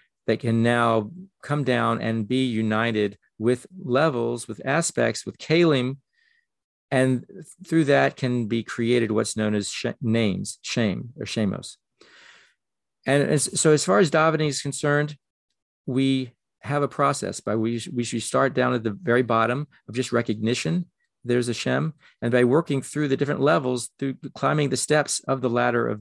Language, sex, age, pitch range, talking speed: English, male, 40-59, 115-140 Hz, 160 wpm